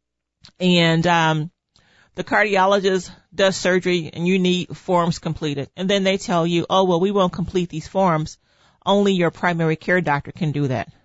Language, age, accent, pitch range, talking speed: English, 40-59, American, 155-195 Hz, 170 wpm